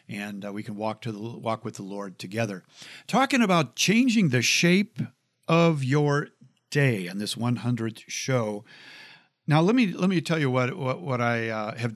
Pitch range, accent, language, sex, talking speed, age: 115-145 Hz, American, English, male, 185 wpm, 50-69